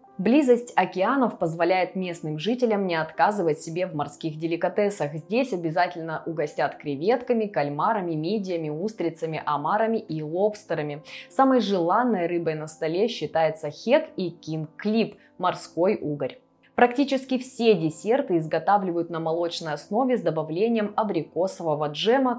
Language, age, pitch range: Russian, 20-39, 160-225 Hz